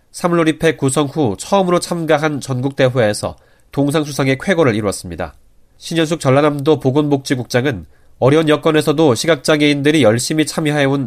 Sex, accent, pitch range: male, native, 110-150 Hz